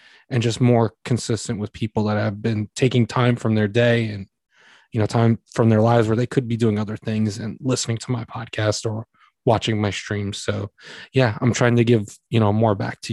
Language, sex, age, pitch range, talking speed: English, male, 20-39, 110-140 Hz, 220 wpm